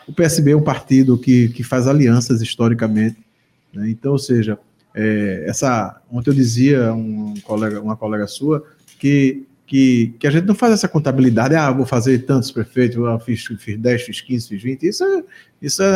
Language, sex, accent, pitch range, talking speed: Portuguese, male, Brazilian, 120-155 Hz, 190 wpm